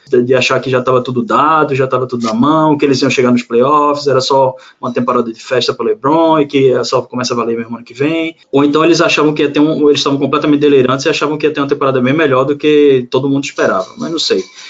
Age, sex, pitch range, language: 20-39, male, 130-155 Hz, Portuguese